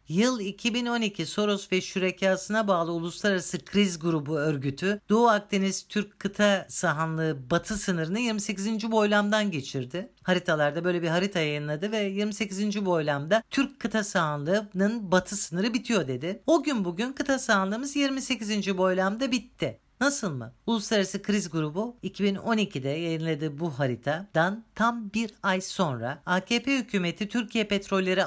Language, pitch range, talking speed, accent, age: Turkish, 160-215 Hz, 125 wpm, native, 50-69